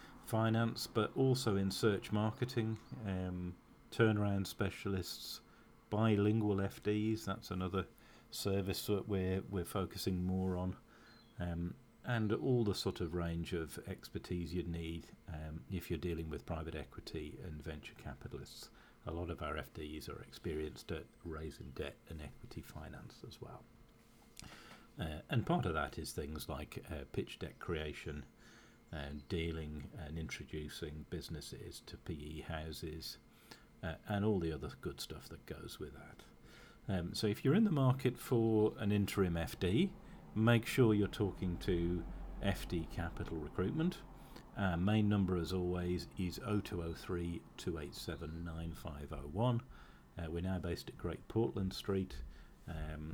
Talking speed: 140 wpm